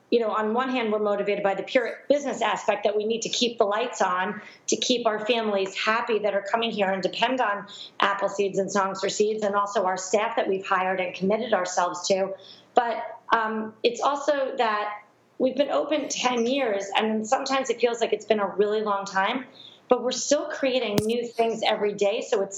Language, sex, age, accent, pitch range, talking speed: English, female, 30-49, American, 205-260 Hz, 210 wpm